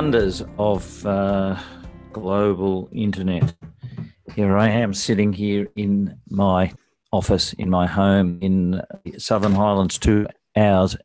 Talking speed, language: 120 wpm, English